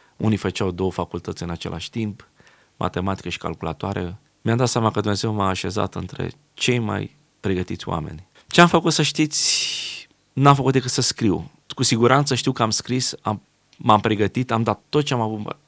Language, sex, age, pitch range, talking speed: Romanian, male, 20-39, 100-125 Hz, 180 wpm